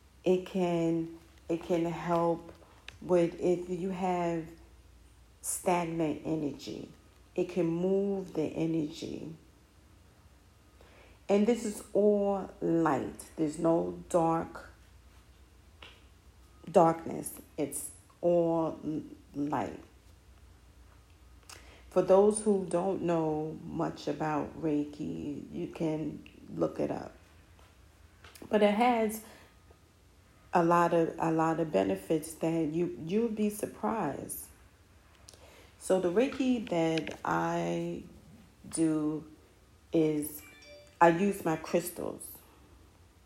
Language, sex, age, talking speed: English, female, 40-59, 95 wpm